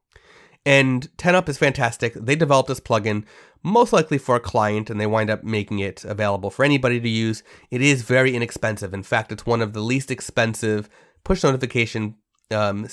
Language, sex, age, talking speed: English, male, 30-49, 185 wpm